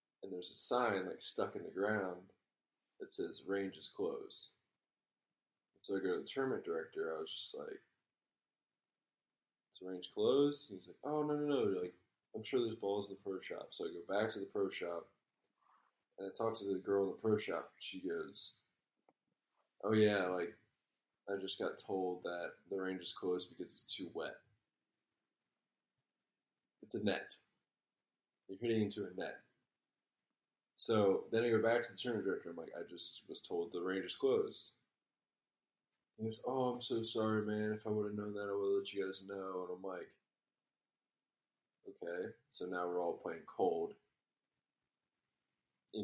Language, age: English, 20-39